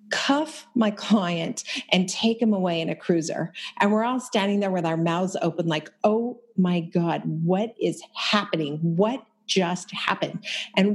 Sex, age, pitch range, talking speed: female, 40-59, 190-250 Hz, 165 wpm